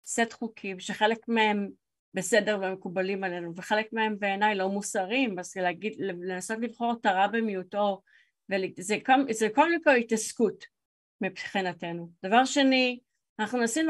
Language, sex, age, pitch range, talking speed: Hebrew, female, 30-49, 190-230 Hz, 125 wpm